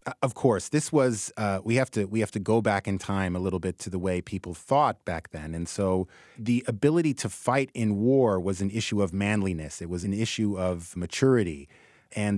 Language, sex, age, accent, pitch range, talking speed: English, male, 30-49, American, 100-125 Hz, 215 wpm